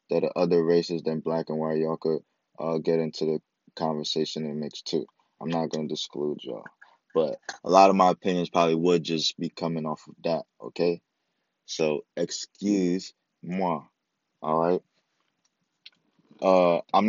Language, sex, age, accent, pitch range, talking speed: English, male, 20-39, American, 80-95 Hz, 160 wpm